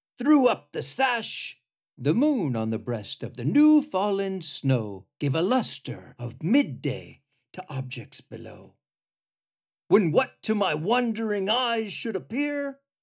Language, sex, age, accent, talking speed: English, male, 50-69, American, 140 wpm